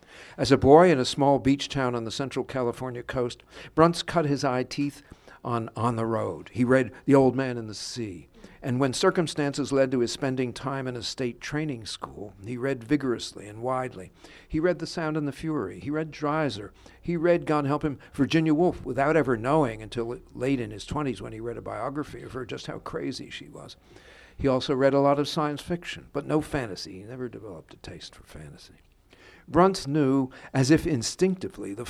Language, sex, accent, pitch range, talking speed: English, male, American, 115-145 Hz, 205 wpm